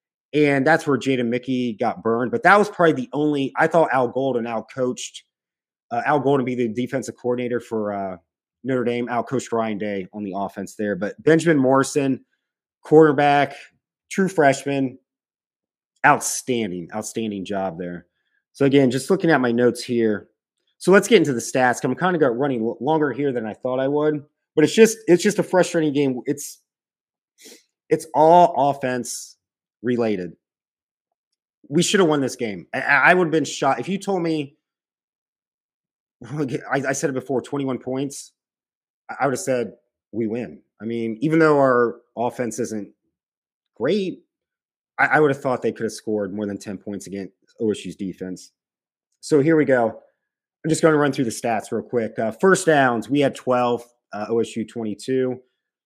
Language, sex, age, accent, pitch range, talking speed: English, male, 30-49, American, 115-150 Hz, 175 wpm